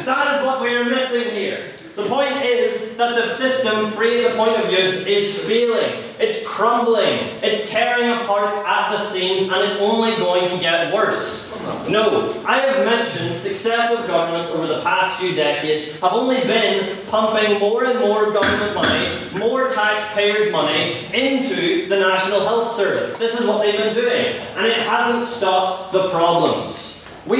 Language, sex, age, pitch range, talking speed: English, male, 30-49, 175-225 Hz, 165 wpm